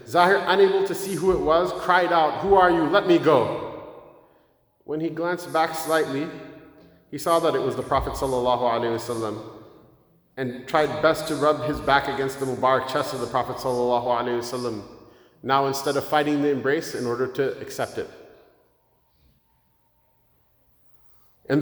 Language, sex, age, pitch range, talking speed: English, male, 30-49, 130-180 Hz, 155 wpm